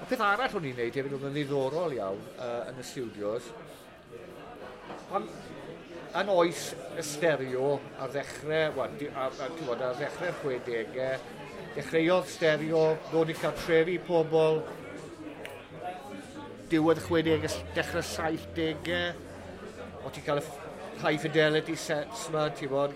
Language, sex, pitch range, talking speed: English, male, 140-165 Hz, 50 wpm